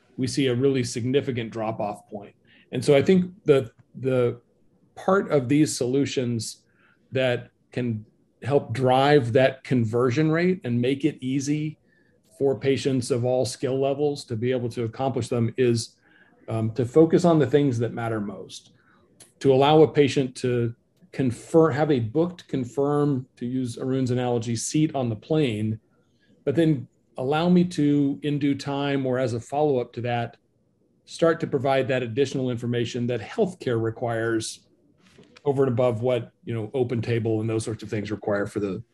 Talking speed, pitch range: 165 wpm, 120-145 Hz